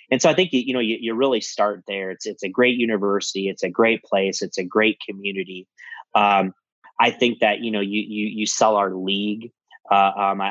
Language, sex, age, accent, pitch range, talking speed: English, male, 20-39, American, 100-110 Hz, 215 wpm